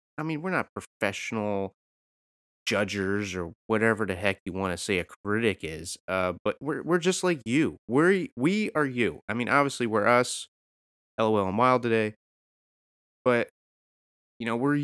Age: 30-49